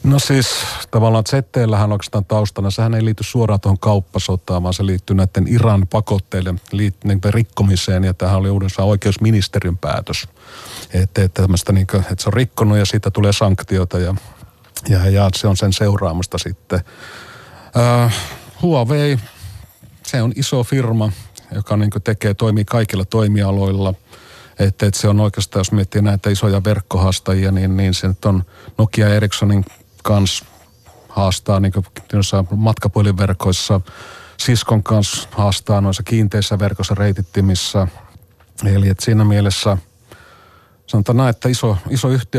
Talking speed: 135 wpm